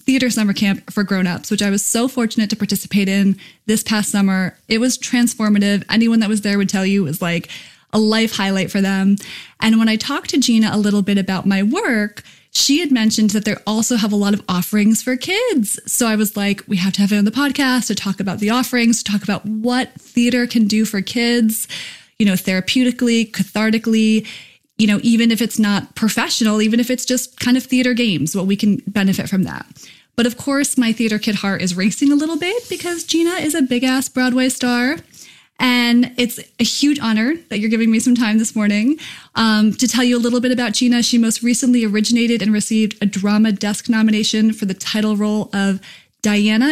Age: 20-39